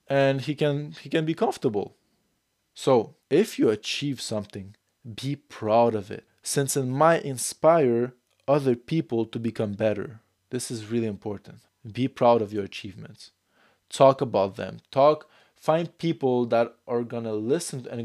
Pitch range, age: 115-150 Hz, 20-39